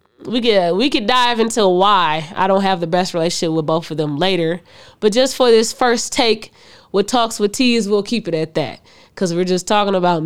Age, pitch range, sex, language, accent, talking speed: 20-39, 175-235 Hz, female, English, American, 220 wpm